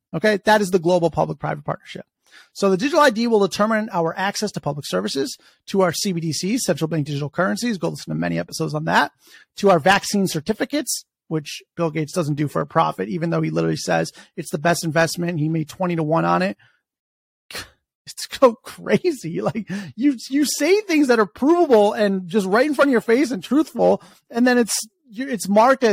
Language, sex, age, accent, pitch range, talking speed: English, male, 30-49, American, 175-255 Hz, 200 wpm